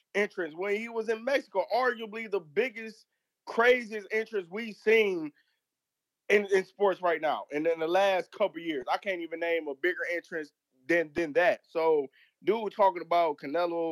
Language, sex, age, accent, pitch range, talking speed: English, male, 20-39, American, 160-220 Hz, 170 wpm